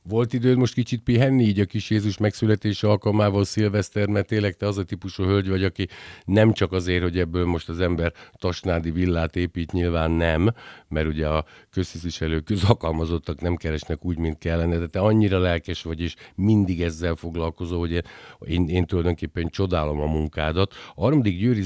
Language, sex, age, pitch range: Hungarian, male, 50-69, 80-100 Hz